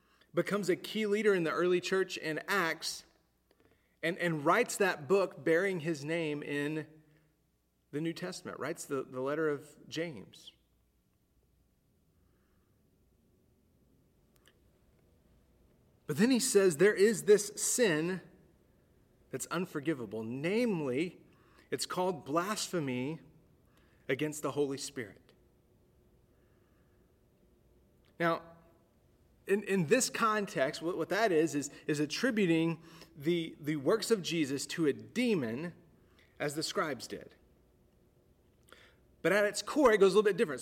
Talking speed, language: 120 wpm, English